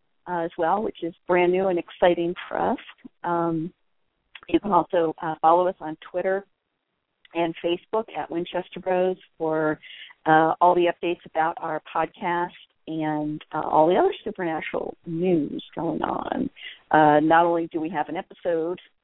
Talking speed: 160 wpm